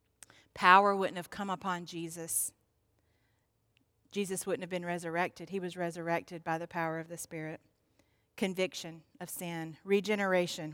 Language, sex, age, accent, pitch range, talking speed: English, female, 40-59, American, 160-195 Hz, 135 wpm